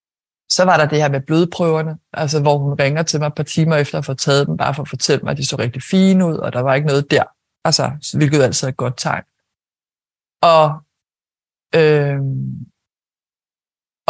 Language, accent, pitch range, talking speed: Danish, native, 145-170 Hz, 200 wpm